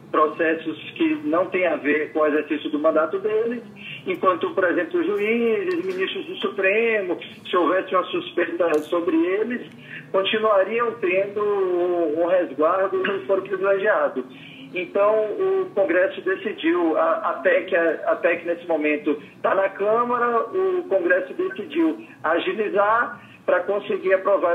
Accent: Brazilian